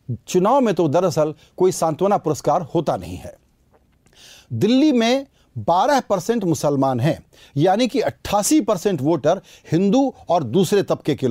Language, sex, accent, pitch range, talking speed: Hindi, male, native, 155-215 Hz, 140 wpm